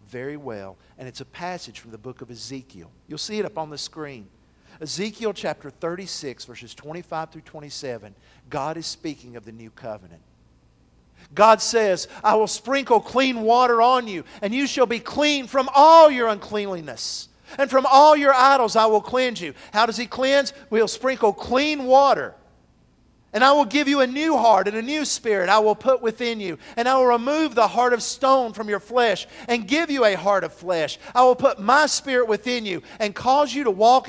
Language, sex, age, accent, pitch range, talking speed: English, male, 50-69, American, 185-270 Hz, 200 wpm